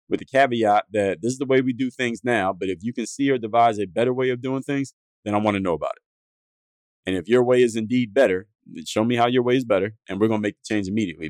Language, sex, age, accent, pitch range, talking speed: English, male, 30-49, American, 100-125 Hz, 290 wpm